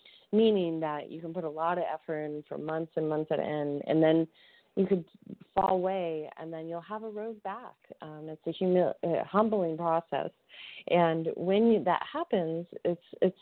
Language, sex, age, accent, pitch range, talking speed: English, female, 30-49, American, 155-200 Hz, 195 wpm